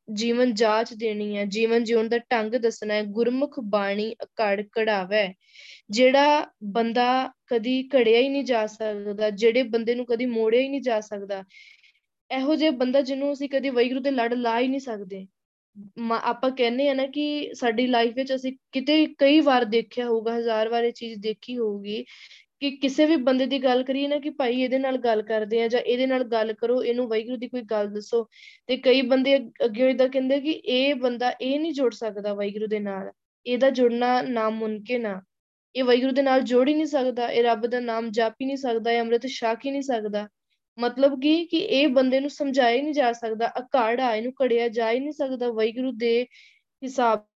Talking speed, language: 165 wpm, Punjabi